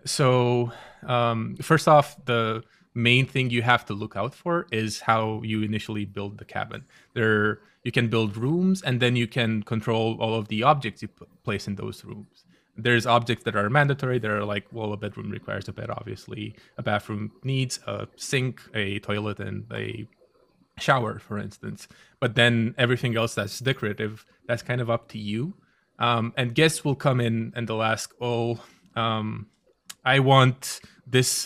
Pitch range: 105-125 Hz